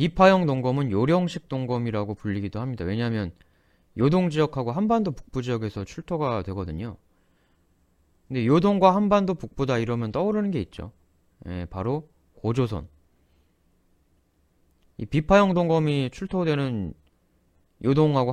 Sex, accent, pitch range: male, native, 85-145 Hz